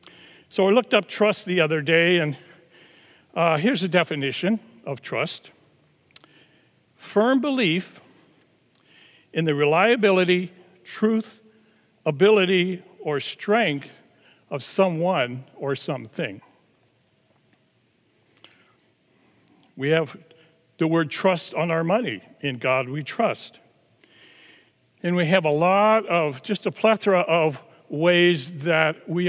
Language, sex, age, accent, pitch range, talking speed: English, male, 60-79, American, 155-195 Hz, 110 wpm